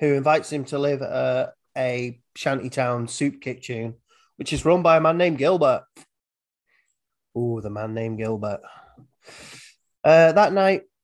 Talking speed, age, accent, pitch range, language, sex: 140 wpm, 30-49, British, 120-150 Hz, English, male